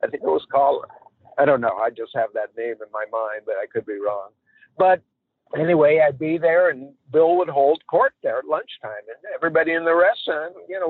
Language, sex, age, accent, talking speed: English, male, 50-69, American, 225 wpm